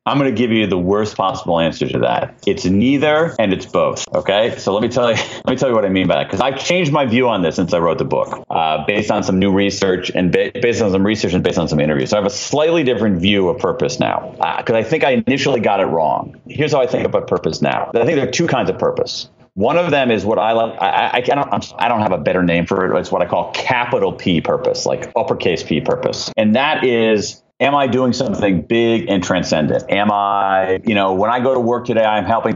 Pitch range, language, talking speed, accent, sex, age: 110-180 Hz, English, 270 wpm, American, male, 40-59